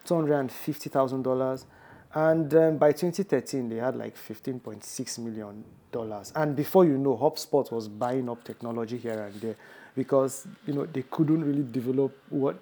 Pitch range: 115-150 Hz